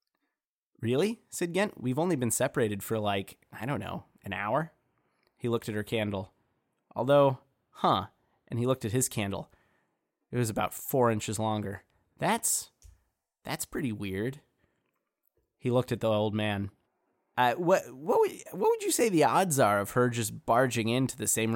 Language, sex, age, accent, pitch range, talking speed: English, male, 20-39, American, 105-130 Hz, 165 wpm